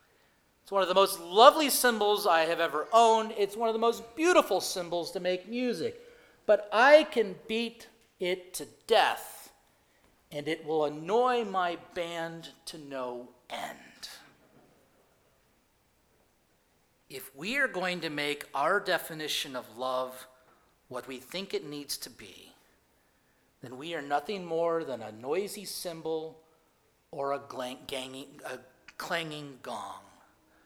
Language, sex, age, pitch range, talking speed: English, male, 40-59, 150-215 Hz, 135 wpm